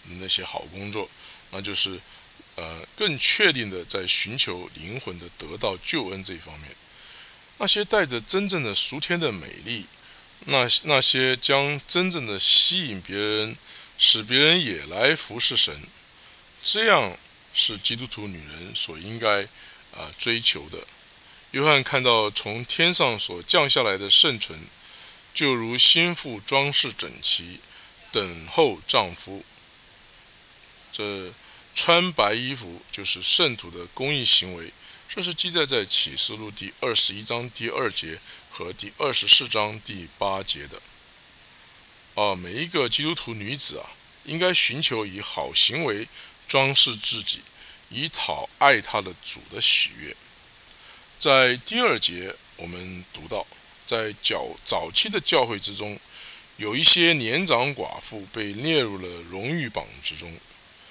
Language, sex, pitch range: English, male, 95-140 Hz